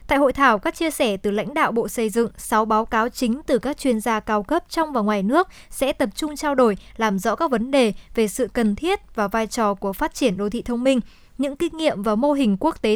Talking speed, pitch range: 270 wpm, 215-285 Hz